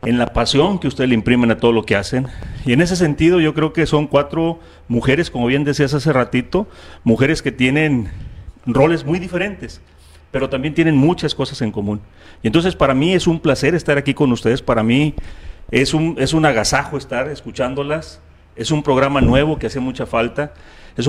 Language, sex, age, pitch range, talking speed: Spanish, male, 40-59, 115-150 Hz, 195 wpm